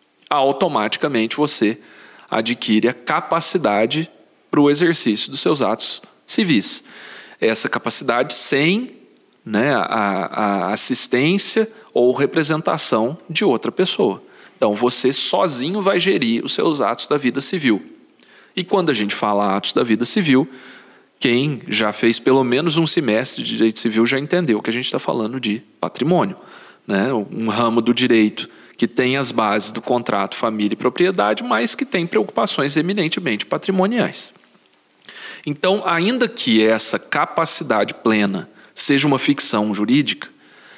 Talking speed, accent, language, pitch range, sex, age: 135 wpm, Brazilian, Portuguese, 115-155 Hz, male, 40-59